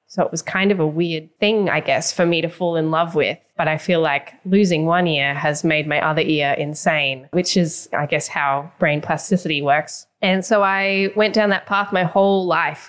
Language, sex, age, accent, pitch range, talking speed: English, female, 10-29, Australian, 165-205 Hz, 225 wpm